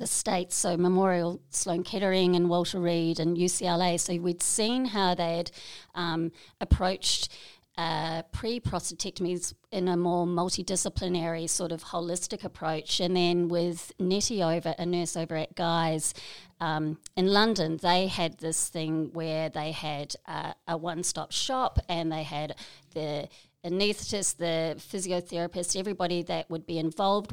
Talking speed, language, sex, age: 140 wpm, English, female, 40-59